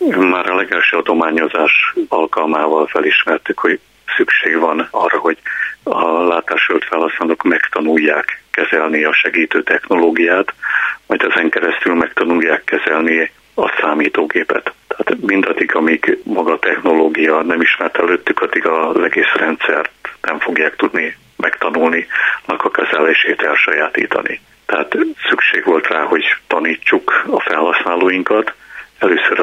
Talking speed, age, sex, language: 110 wpm, 60-79, male, Hungarian